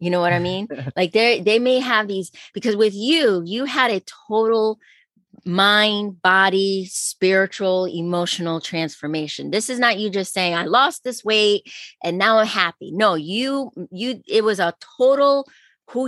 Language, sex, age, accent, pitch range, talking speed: English, female, 30-49, American, 165-215 Hz, 165 wpm